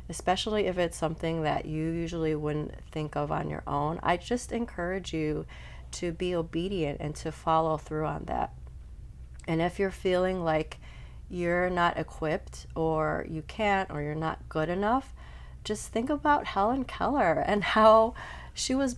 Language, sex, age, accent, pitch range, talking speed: English, female, 30-49, American, 155-200 Hz, 160 wpm